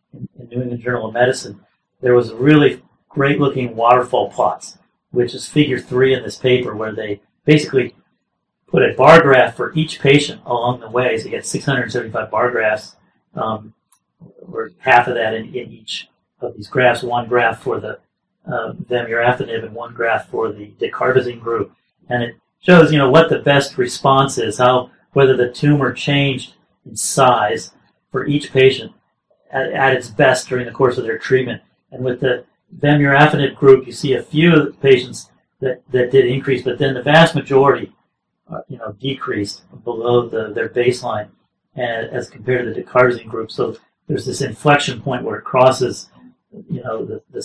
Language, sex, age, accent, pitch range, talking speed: English, male, 40-59, American, 120-140 Hz, 180 wpm